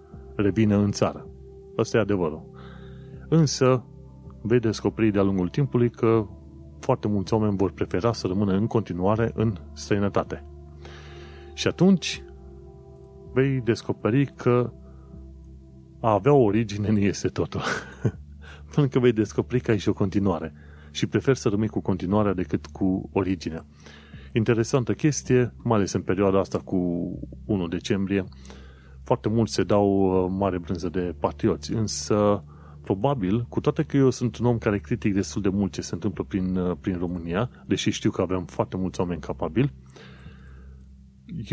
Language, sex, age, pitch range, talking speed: Romanian, male, 30-49, 75-115 Hz, 145 wpm